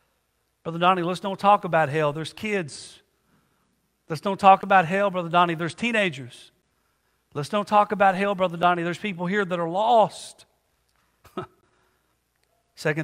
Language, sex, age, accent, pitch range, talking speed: English, male, 50-69, American, 125-170 Hz, 145 wpm